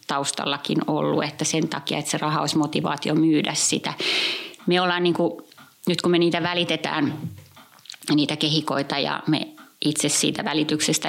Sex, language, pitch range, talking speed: female, Finnish, 150-170 Hz, 140 wpm